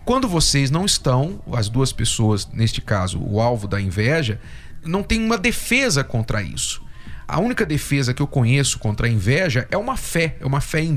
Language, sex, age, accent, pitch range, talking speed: Portuguese, male, 40-59, Brazilian, 120-180 Hz, 190 wpm